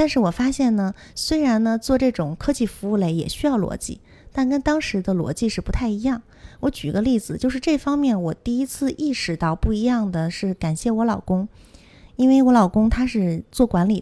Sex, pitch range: female, 185-275 Hz